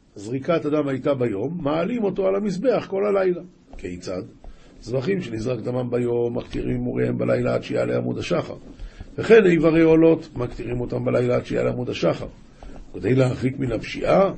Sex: male